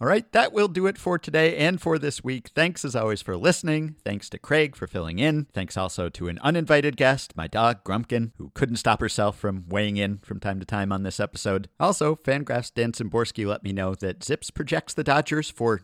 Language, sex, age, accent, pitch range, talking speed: English, male, 50-69, American, 100-130 Hz, 220 wpm